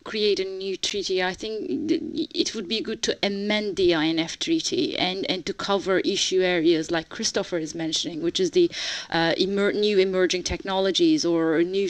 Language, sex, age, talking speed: English, female, 30-49, 180 wpm